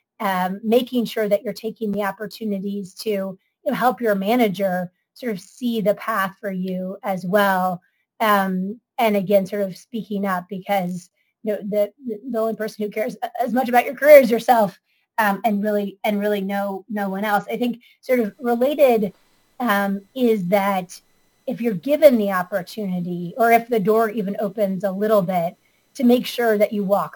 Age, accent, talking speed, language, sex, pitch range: 30-49, American, 185 wpm, English, female, 195-225 Hz